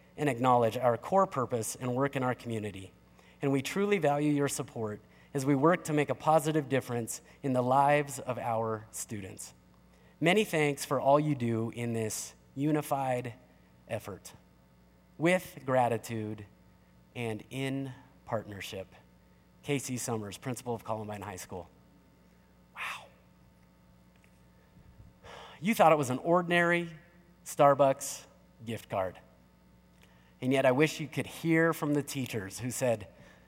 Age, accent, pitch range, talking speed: 30-49, American, 90-150 Hz, 135 wpm